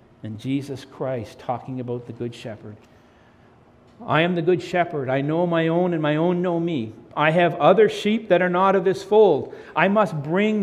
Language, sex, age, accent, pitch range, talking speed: English, male, 60-79, American, 135-180 Hz, 200 wpm